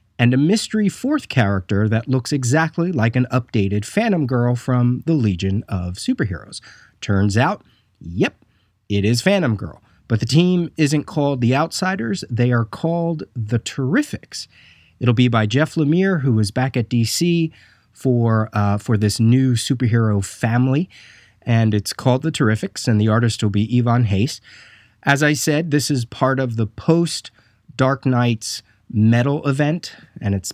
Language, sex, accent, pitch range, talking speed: English, male, American, 110-140 Hz, 155 wpm